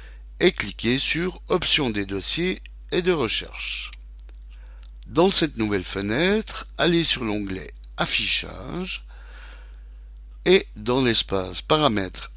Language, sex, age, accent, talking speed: French, male, 60-79, French, 100 wpm